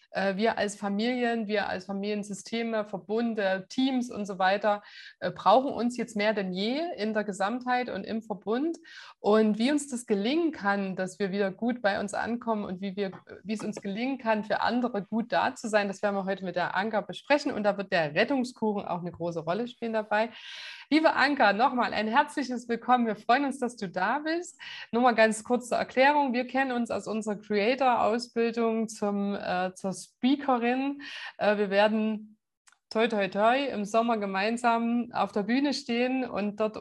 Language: German